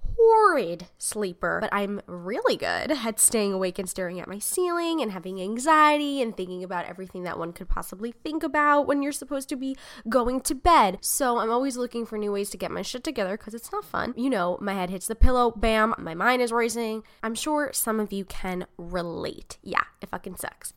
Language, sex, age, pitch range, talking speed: English, female, 10-29, 205-280 Hz, 215 wpm